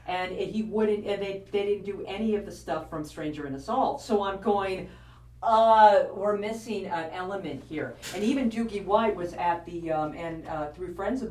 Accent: American